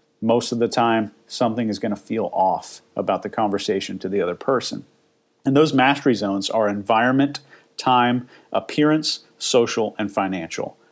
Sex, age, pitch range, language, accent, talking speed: male, 40-59, 110-130 Hz, English, American, 155 wpm